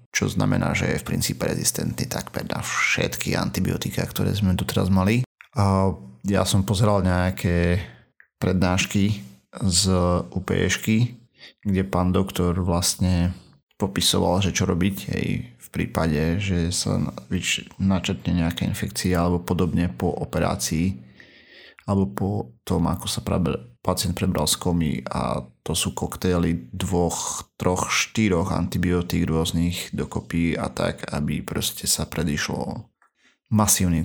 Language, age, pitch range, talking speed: Slovak, 30-49, 85-100 Hz, 125 wpm